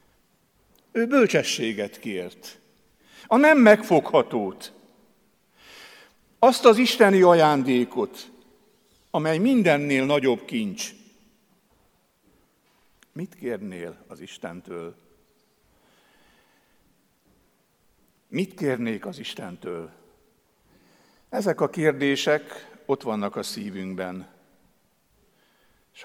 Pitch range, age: 110-165 Hz, 60-79